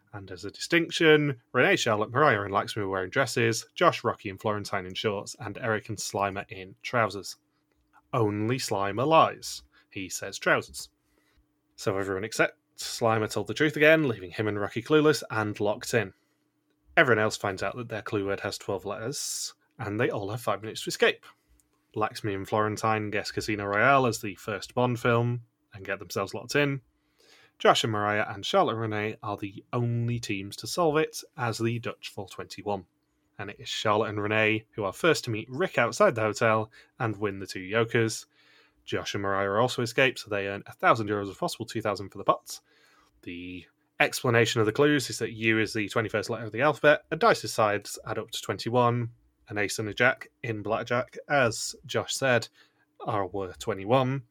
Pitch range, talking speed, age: 105-125 Hz, 185 wpm, 30-49